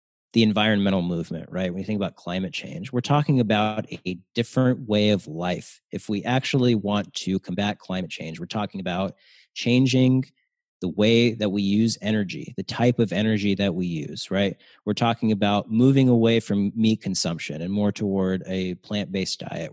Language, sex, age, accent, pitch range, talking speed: English, male, 30-49, American, 95-120 Hz, 175 wpm